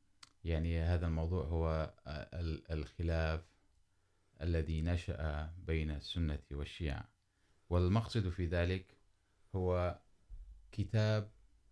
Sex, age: male, 30-49